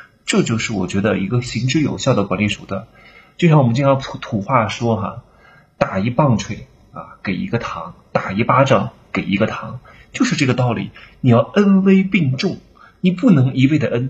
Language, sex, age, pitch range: Chinese, male, 30-49, 105-155 Hz